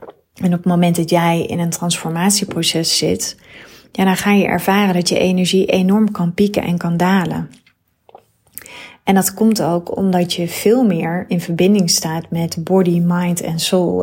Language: Dutch